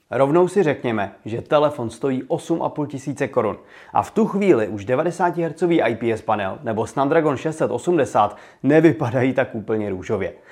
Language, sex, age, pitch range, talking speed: Czech, male, 30-49, 115-160 Hz, 135 wpm